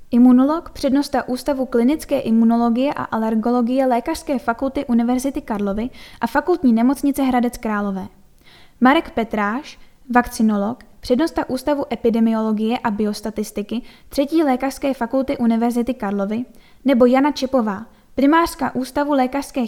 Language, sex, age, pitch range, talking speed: Czech, female, 10-29, 230-275 Hz, 105 wpm